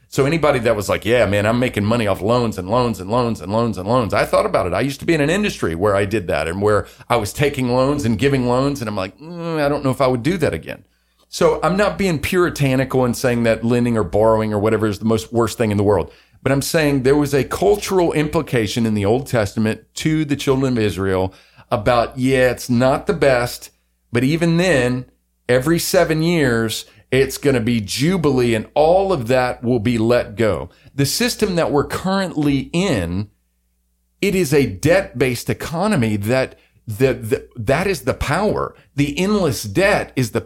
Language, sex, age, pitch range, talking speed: English, male, 40-59, 110-145 Hz, 210 wpm